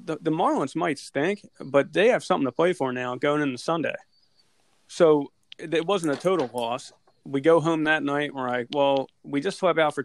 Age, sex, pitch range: 30-49, male, 130-150 Hz